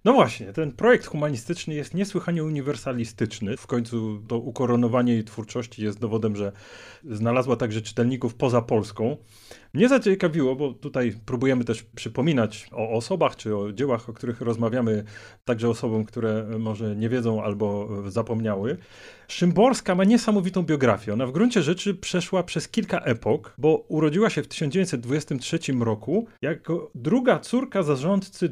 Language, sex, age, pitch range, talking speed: Polish, male, 30-49, 115-160 Hz, 140 wpm